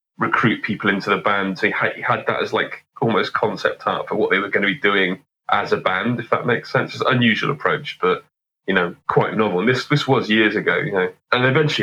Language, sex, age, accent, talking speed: English, male, 30-49, British, 245 wpm